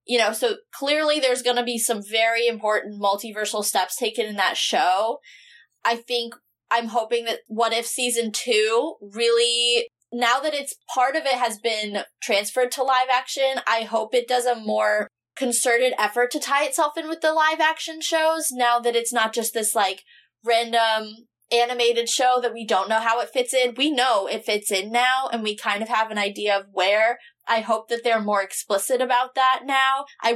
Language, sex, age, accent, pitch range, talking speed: English, female, 20-39, American, 220-265 Hz, 195 wpm